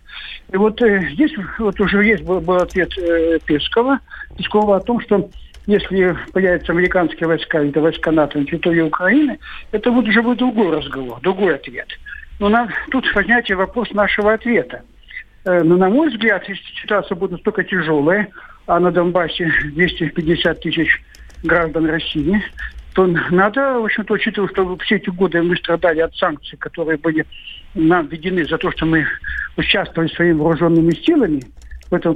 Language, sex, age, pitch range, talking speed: Russian, male, 60-79, 170-235 Hz, 160 wpm